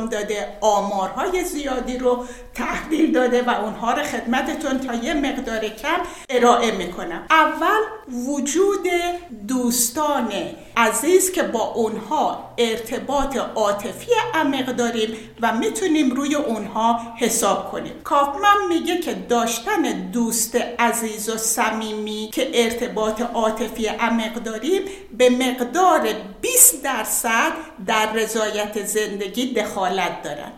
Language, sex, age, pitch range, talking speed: Persian, female, 60-79, 225-315 Hz, 110 wpm